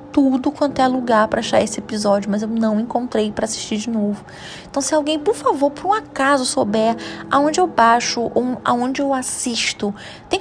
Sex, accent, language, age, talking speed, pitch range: female, Brazilian, Portuguese, 20-39, 185 wpm, 220-275 Hz